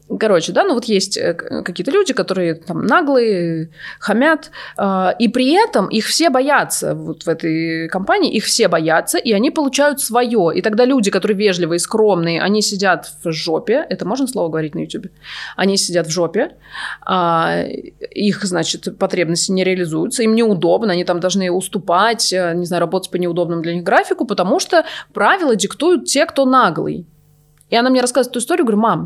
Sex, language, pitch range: female, Russian, 175-255 Hz